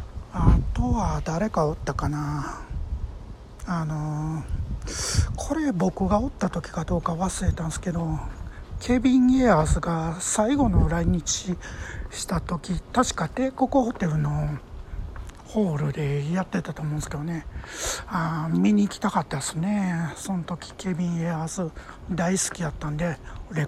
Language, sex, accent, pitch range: Japanese, male, native, 150-200 Hz